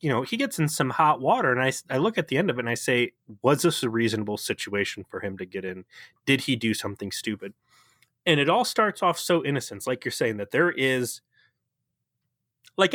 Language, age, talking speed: English, 30-49, 230 wpm